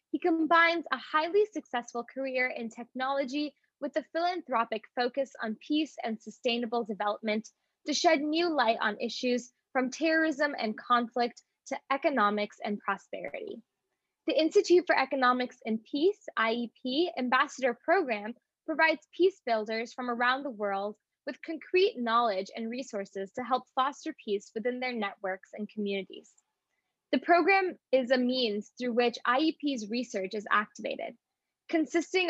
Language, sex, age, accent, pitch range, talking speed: English, female, 10-29, American, 220-295 Hz, 135 wpm